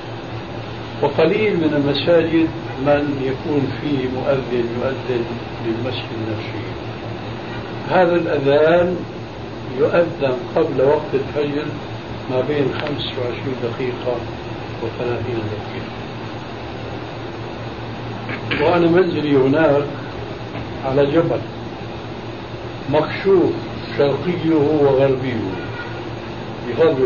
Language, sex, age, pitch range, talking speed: Arabic, male, 60-79, 115-145 Hz, 70 wpm